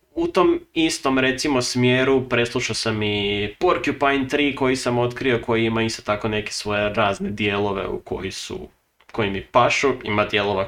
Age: 20-39